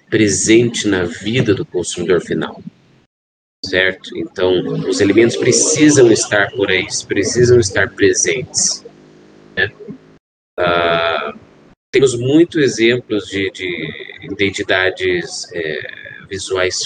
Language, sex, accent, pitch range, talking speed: Portuguese, male, Brazilian, 95-125 Hz, 95 wpm